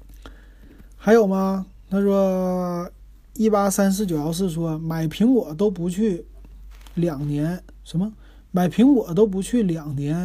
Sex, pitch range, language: male, 150-200 Hz, Chinese